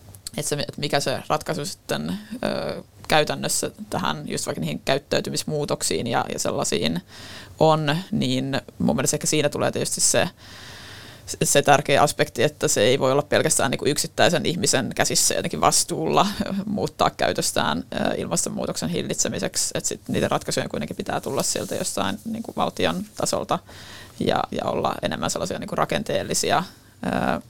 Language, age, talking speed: Finnish, 20-39, 140 wpm